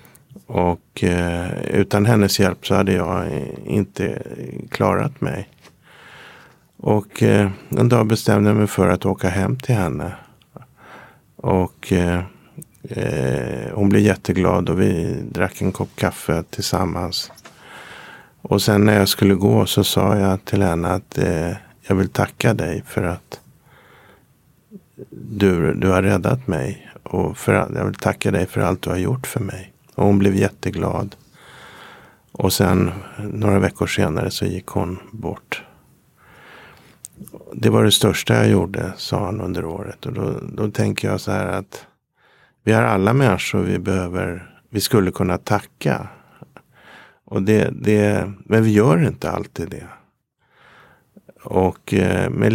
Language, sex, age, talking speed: Swedish, male, 50-69, 145 wpm